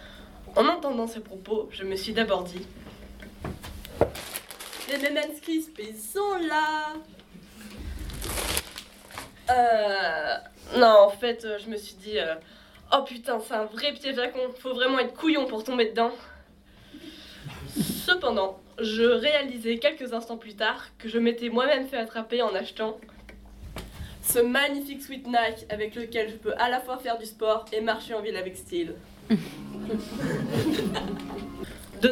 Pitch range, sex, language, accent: 215-280 Hz, female, French, French